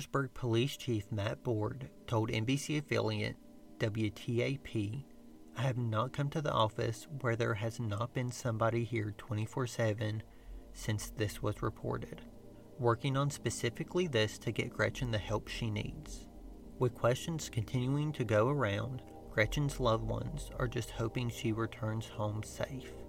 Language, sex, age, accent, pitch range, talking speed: English, male, 40-59, American, 110-125 Hz, 145 wpm